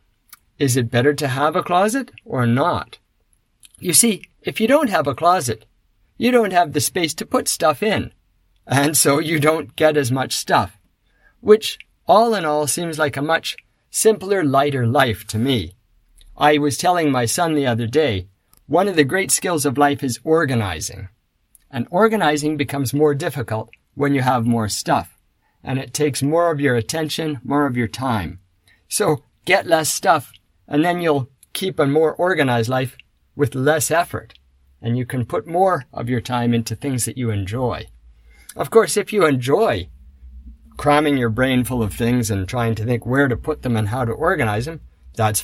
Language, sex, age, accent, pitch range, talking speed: English, male, 50-69, American, 115-155 Hz, 180 wpm